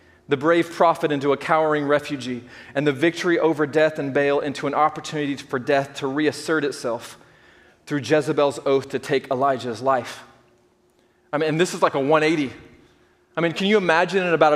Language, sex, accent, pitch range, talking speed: English, male, American, 135-180 Hz, 180 wpm